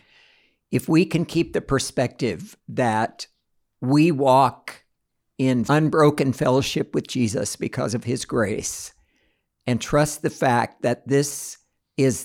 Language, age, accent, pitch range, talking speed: English, 60-79, American, 120-140 Hz, 120 wpm